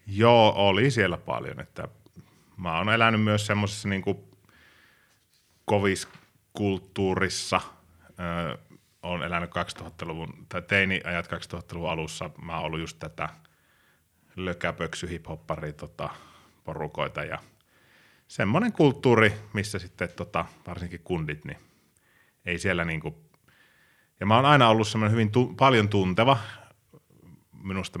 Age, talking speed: 30-49, 110 wpm